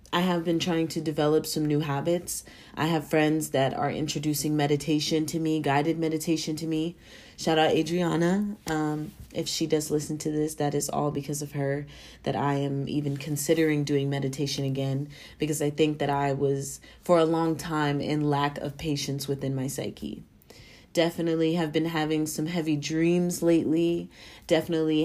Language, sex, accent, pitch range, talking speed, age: English, female, American, 145-165 Hz, 170 wpm, 30-49